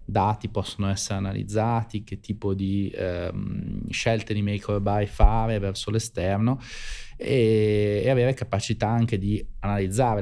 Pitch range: 100-115 Hz